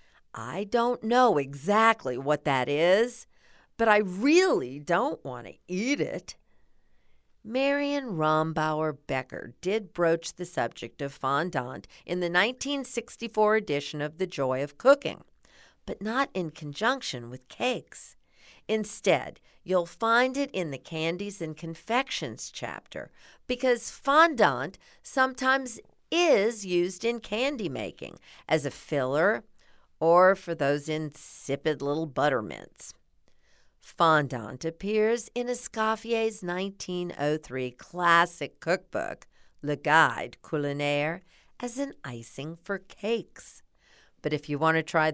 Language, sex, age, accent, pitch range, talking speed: English, female, 50-69, American, 150-225 Hz, 115 wpm